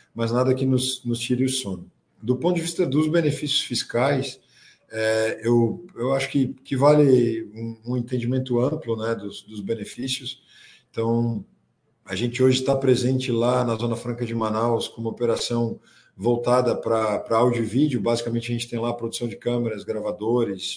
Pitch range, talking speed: 105-125 Hz, 175 wpm